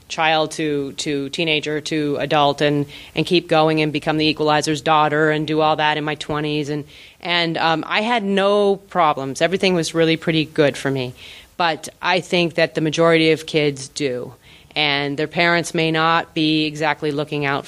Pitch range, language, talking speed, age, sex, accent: 145-175 Hz, English, 185 wpm, 30-49, female, American